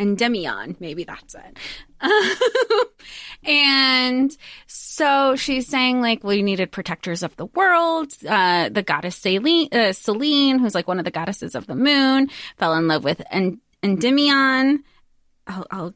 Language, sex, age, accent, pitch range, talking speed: English, female, 20-39, American, 185-245 Hz, 140 wpm